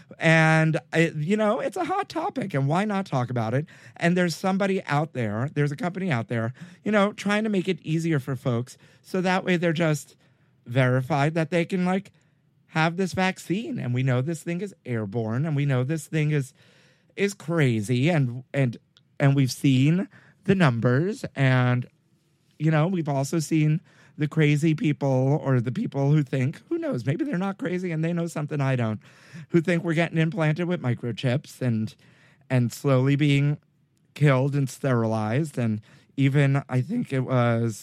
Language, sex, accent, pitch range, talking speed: English, male, American, 130-165 Hz, 180 wpm